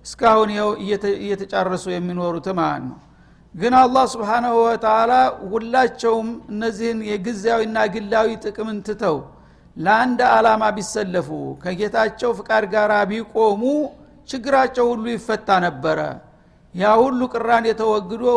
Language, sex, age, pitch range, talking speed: Amharic, male, 60-79, 195-225 Hz, 100 wpm